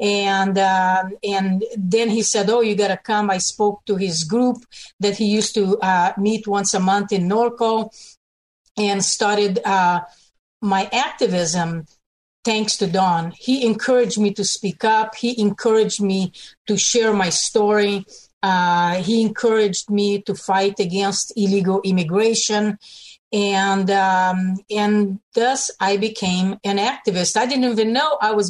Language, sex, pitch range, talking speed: English, female, 190-215 Hz, 150 wpm